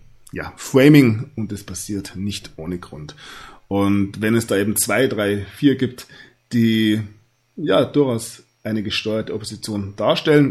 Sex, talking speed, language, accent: male, 135 wpm, German, German